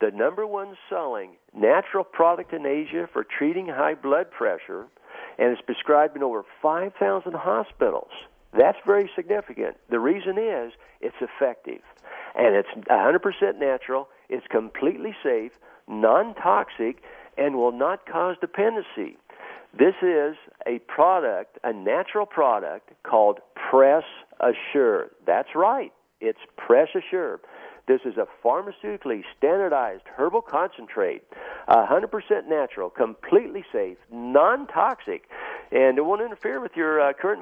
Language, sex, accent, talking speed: English, male, American, 120 wpm